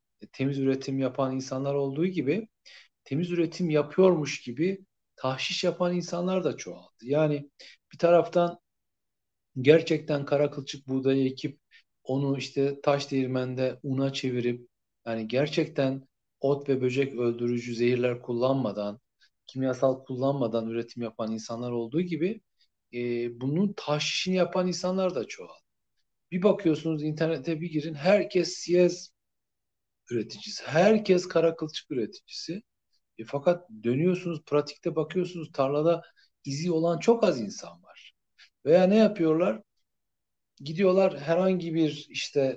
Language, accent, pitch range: Turkish, native, 130-175 Hz